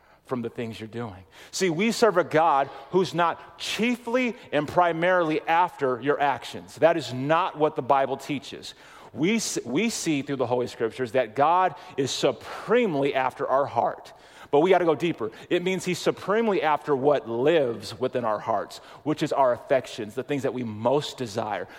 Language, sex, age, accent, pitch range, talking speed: English, male, 30-49, American, 120-175 Hz, 175 wpm